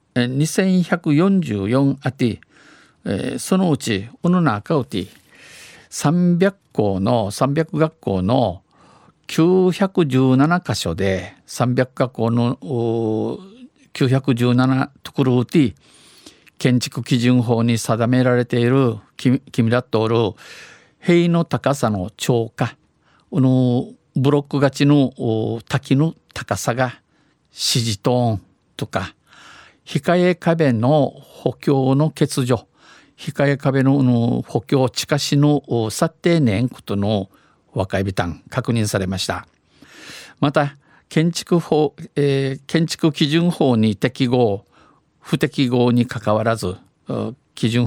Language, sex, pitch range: Japanese, male, 115-150 Hz